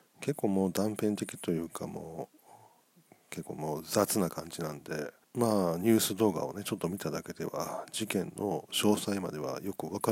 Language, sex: Japanese, male